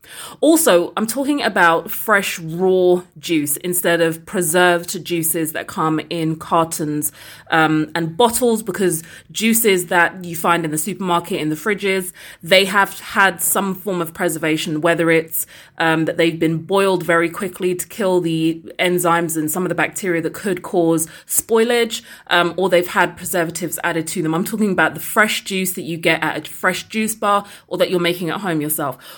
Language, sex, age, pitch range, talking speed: English, female, 30-49, 165-200 Hz, 180 wpm